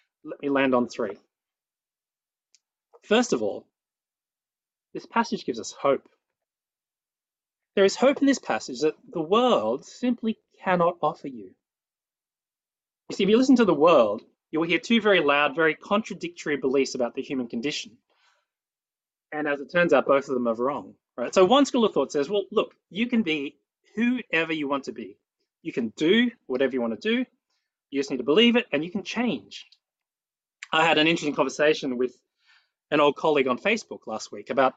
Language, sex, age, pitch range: English, male, 30-49, 140-220 Hz